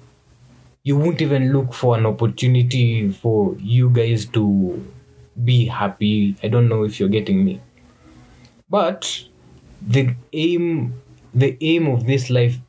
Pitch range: 105-125 Hz